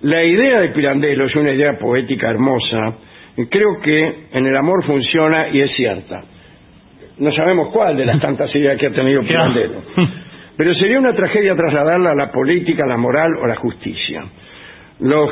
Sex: male